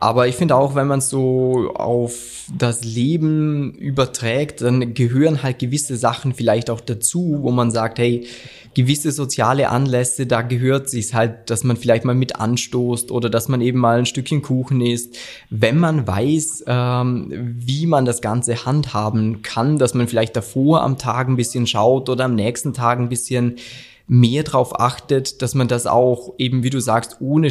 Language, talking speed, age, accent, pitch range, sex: German, 180 wpm, 20-39, German, 120-140 Hz, male